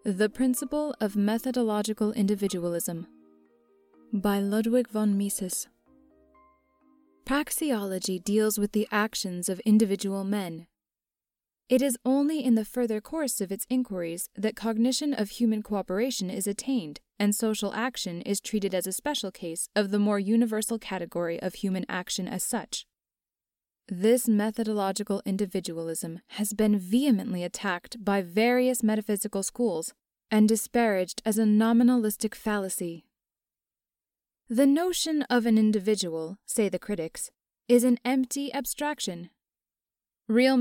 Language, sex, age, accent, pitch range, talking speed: English, female, 20-39, American, 195-245 Hz, 125 wpm